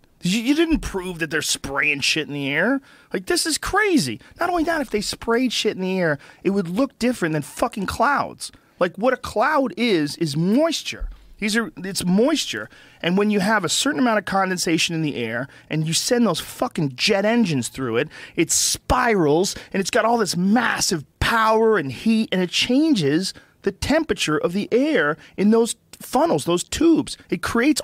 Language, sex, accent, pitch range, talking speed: English, male, American, 165-245 Hz, 190 wpm